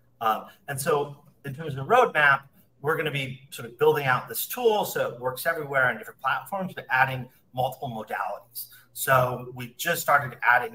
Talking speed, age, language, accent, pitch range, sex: 190 wpm, 40-59, English, American, 125-175 Hz, male